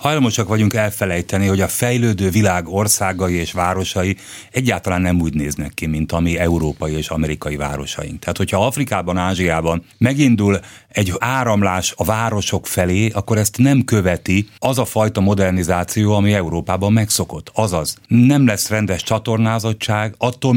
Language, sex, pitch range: Hungarian, male, 90-115 Hz